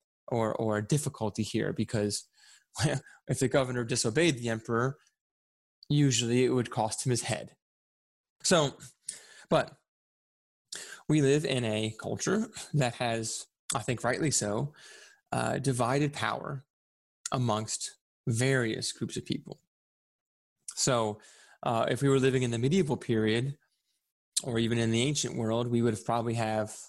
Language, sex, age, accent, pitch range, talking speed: English, male, 20-39, American, 110-135 Hz, 135 wpm